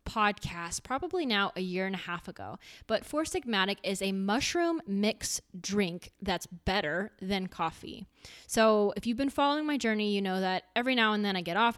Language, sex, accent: English, female, American